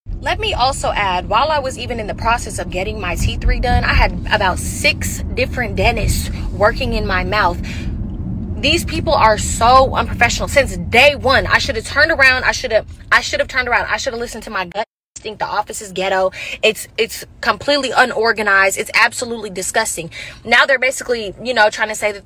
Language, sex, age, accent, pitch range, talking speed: English, female, 20-39, American, 205-265 Hz, 200 wpm